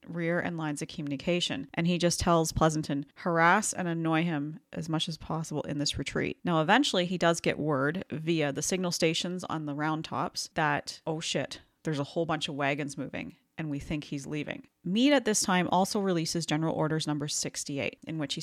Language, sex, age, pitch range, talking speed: English, female, 30-49, 155-180 Hz, 205 wpm